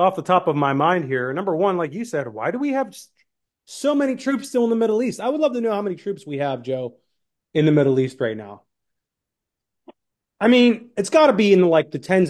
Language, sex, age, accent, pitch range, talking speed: English, male, 30-49, American, 150-230 Hz, 250 wpm